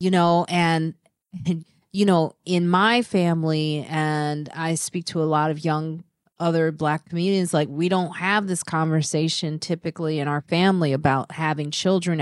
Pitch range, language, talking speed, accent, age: 160-215 Hz, English, 160 wpm, American, 30-49